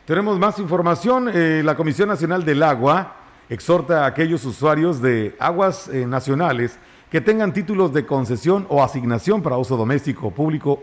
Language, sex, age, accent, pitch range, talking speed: Spanish, male, 50-69, Mexican, 130-180 Hz, 155 wpm